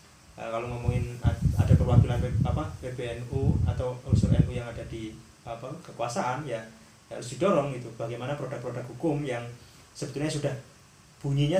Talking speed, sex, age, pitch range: 135 wpm, male, 20-39, 115-135 Hz